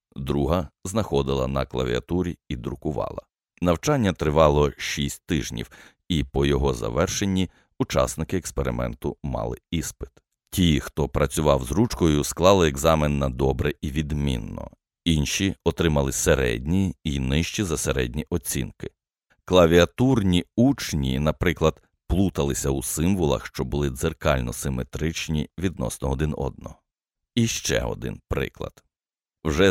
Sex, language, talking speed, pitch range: male, Ukrainian, 105 wpm, 70-85 Hz